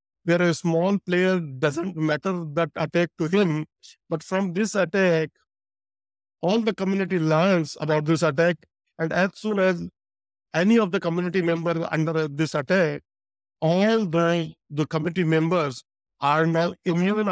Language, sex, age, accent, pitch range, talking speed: English, male, 50-69, Indian, 150-180 Hz, 140 wpm